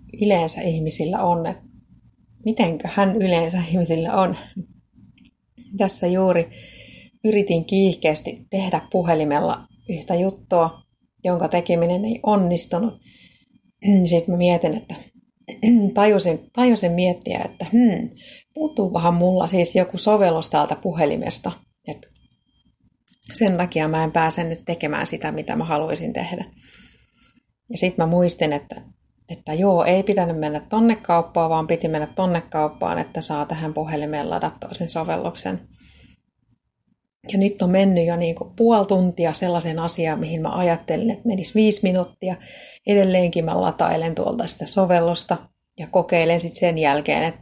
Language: Finnish